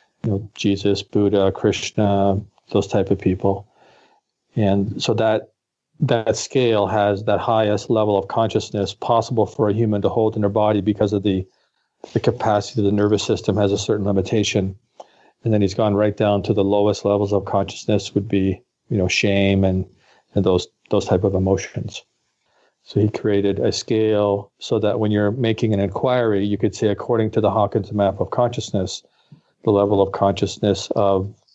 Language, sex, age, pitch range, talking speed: English, male, 40-59, 95-110 Hz, 175 wpm